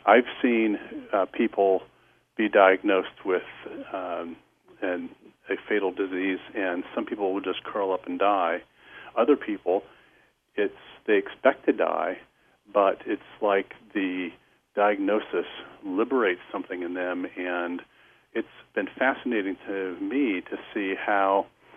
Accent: American